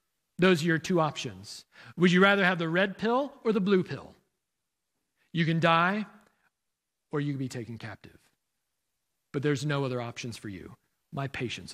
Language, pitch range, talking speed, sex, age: English, 135-185 Hz, 175 wpm, male, 40-59